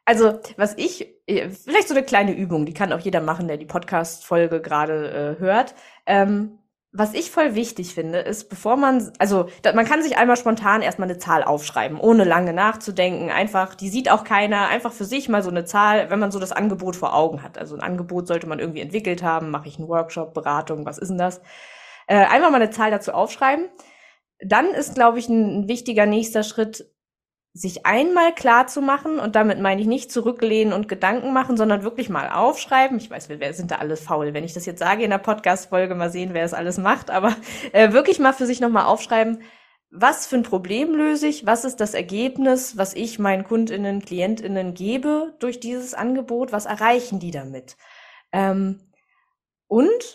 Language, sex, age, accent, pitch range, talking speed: German, female, 20-39, German, 180-245 Hz, 200 wpm